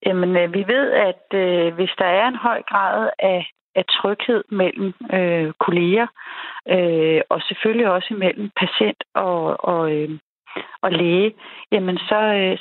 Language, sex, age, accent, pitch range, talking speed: Danish, female, 30-49, native, 180-220 Hz, 150 wpm